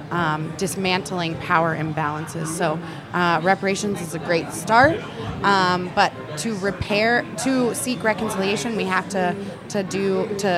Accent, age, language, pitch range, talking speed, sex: American, 30-49, English, 170-210 Hz, 135 wpm, female